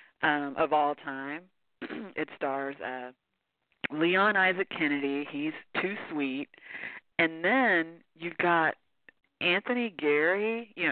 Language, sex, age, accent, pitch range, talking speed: English, female, 40-59, American, 145-175 Hz, 110 wpm